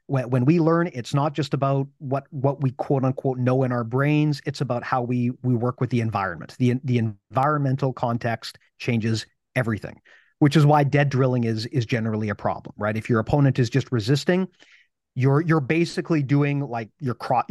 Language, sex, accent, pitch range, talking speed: English, male, American, 120-150 Hz, 190 wpm